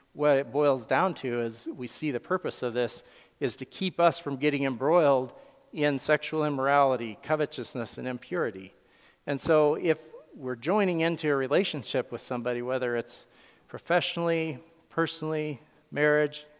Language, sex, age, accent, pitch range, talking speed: English, male, 40-59, American, 125-155 Hz, 145 wpm